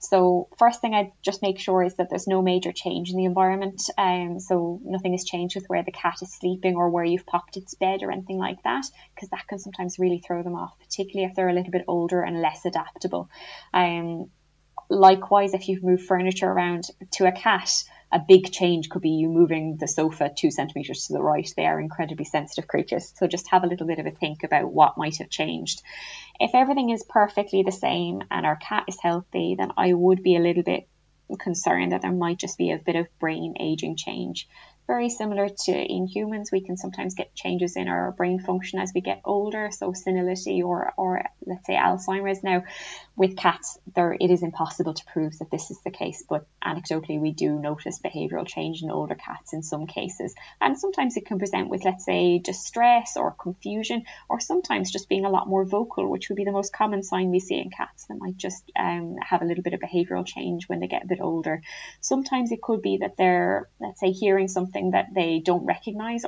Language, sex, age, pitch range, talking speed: English, female, 20-39, 170-195 Hz, 220 wpm